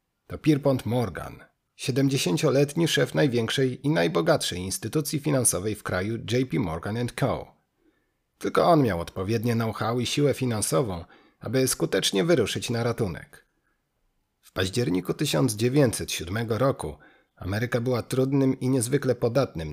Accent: native